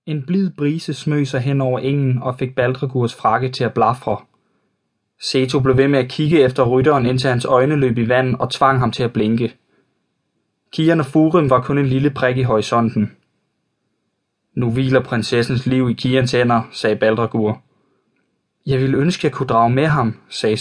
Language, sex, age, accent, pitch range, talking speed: Danish, male, 20-39, native, 120-140 Hz, 185 wpm